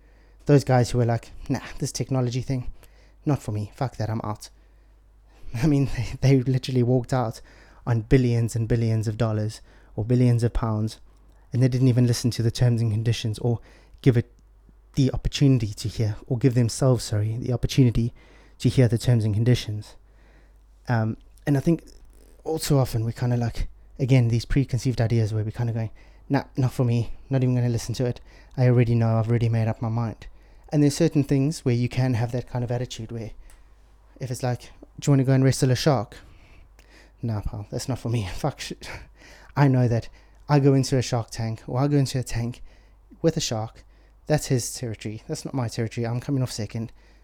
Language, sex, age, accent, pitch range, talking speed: English, male, 20-39, British, 110-130 Hz, 210 wpm